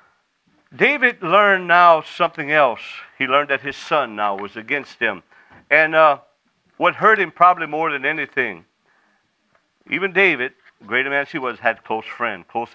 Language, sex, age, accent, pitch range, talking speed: English, male, 50-69, American, 135-190 Hz, 165 wpm